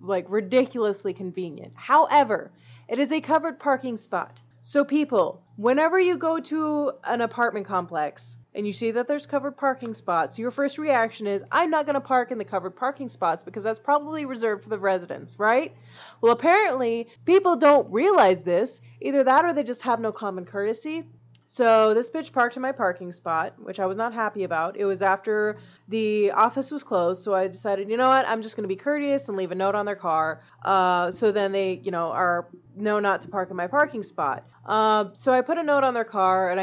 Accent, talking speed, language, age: American, 210 wpm, English, 30-49